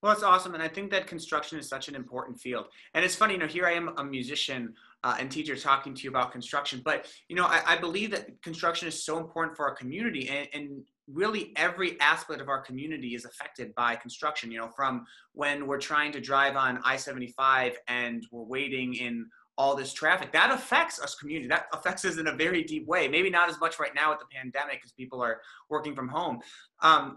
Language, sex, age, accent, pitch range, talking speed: English, male, 30-49, American, 130-160 Hz, 225 wpm